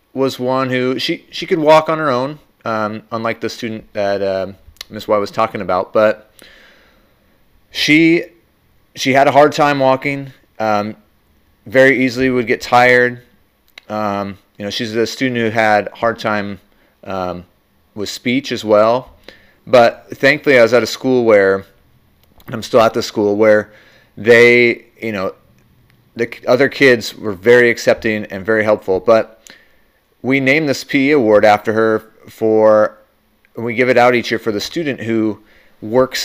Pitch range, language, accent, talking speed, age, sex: 105-130 Hz, English, American, 160 wpm, 30-49, male